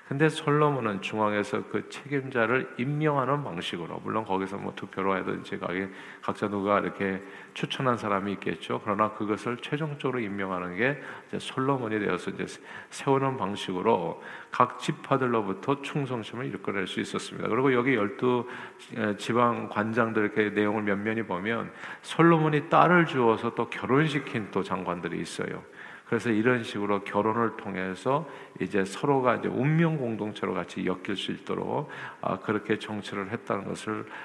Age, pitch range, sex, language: 50-69, 100-135 Hz, male, Korean